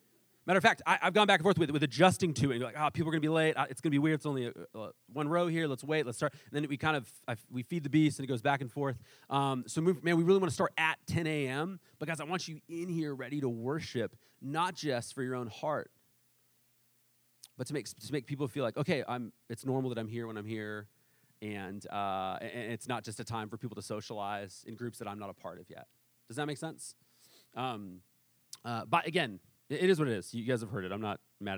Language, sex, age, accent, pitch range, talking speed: English, male, 30-49, American, 115-155 Hz, 270 wpm